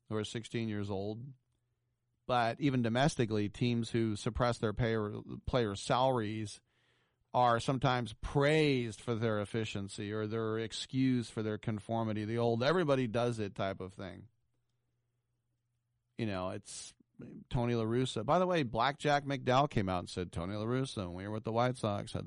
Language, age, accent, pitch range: English, 40-59, American, 105-125 Hz